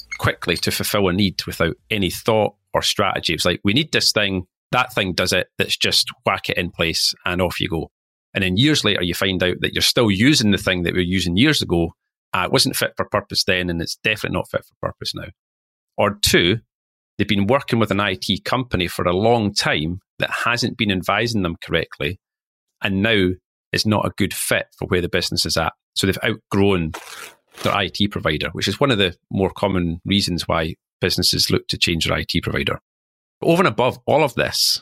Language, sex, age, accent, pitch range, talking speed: English, male, 40-59, British, 85-105 Hz, 215 wpm